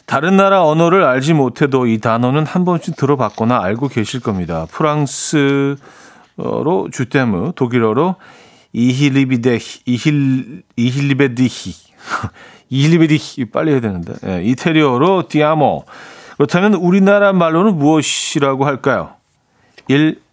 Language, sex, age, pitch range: Korean, male, 40-59, 115-165 Hz